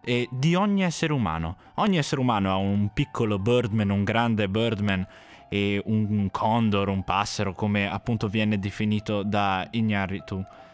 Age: 20-39